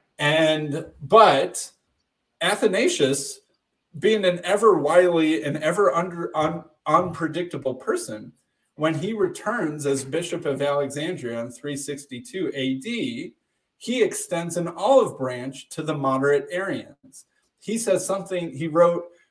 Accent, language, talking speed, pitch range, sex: American, English, 115 wpm, 130-175 Hz, male